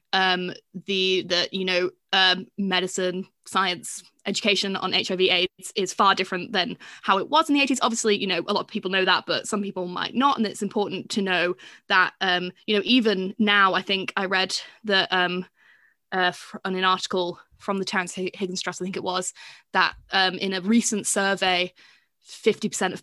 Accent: British